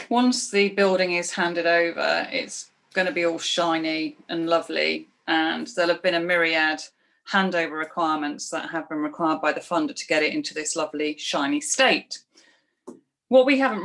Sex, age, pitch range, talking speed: female, 30-49, 160-190 Hz, 175 wpm